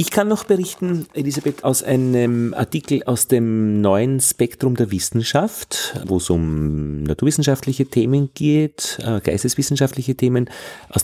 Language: German